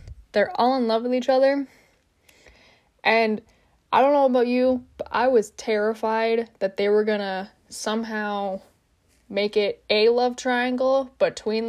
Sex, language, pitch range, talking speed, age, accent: female, English, 200-255 Hz, 150 wpm, 10-29, American